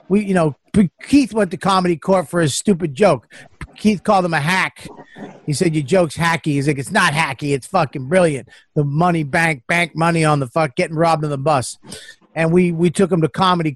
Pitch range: 165-220 Hz